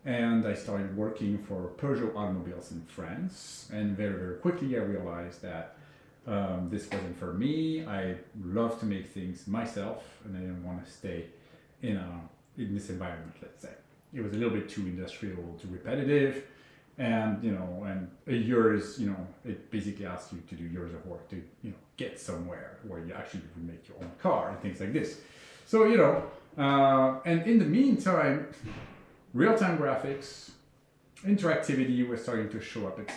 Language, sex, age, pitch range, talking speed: English, male, 40-59, 90-130 Hz, 185 wpm